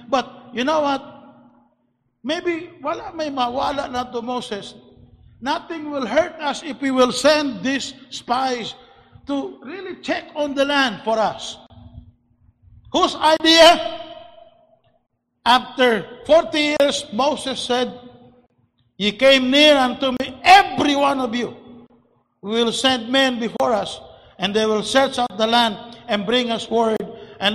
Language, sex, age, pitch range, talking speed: English, male, 50-69, 165-260 Hz, 135 wpm